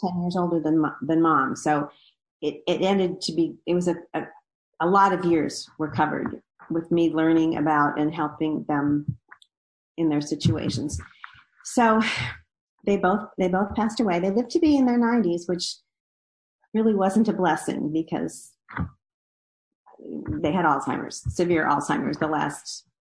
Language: English